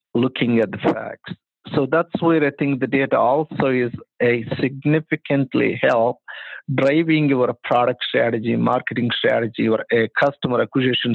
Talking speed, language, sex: 140 wpm, English, male